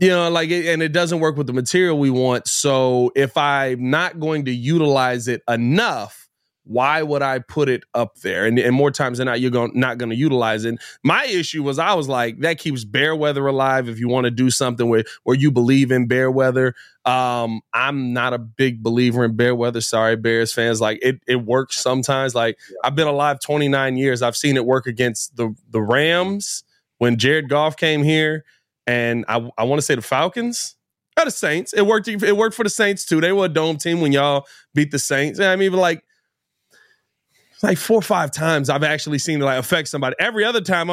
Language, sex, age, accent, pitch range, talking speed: English, male, 20-39, American, 125-170 Hz, 220 wpm